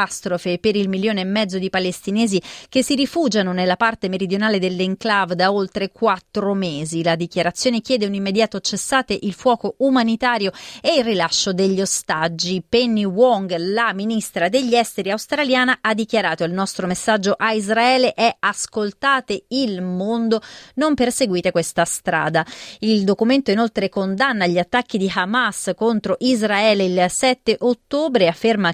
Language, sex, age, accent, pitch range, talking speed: Italian, female, 30-49, native, 190-230 Hz, 145 wpm